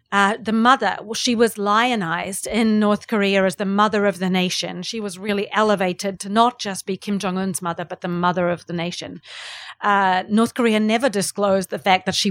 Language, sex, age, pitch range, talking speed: English, female, 30-49, 195-230 Hz, 205 wpm